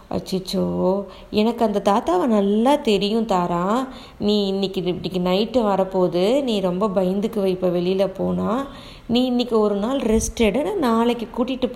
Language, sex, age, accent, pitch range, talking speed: Tamil, female, 20-39, native, 190-235 Hz, 130 wpm